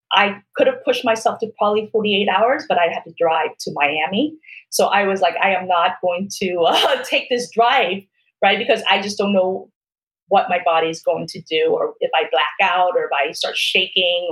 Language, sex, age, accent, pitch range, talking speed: English, female, 30-49, American, 180-235 Hz, 220 wpm